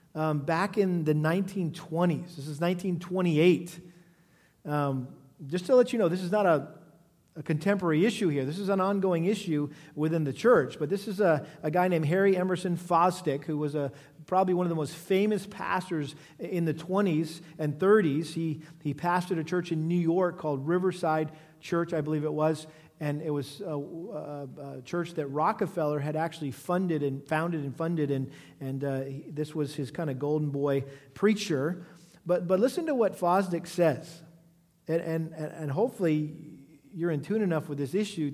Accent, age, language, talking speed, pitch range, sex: American, 40-59, English, 180 wpm, 150-180 Hz, male